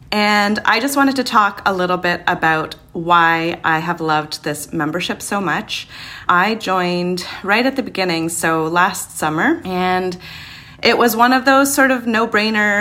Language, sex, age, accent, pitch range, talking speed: English, female, 30-49, American, 165-215 Hz, 170 wpm